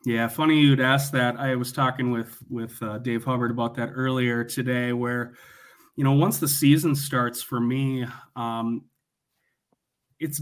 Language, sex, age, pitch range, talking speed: English, male, 30-49, 120-145 Hz, 160 wpm